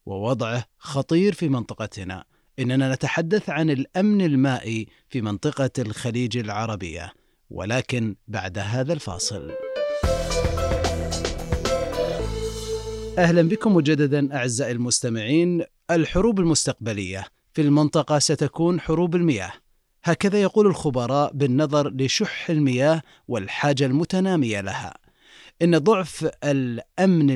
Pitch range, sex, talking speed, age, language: 120-170 Hz, male, 90 wpm, 30-49, Arabic